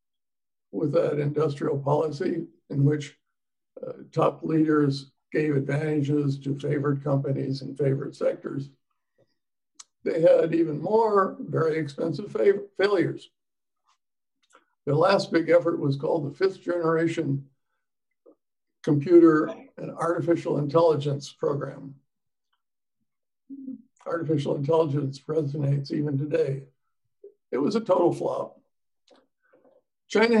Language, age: English, 60-79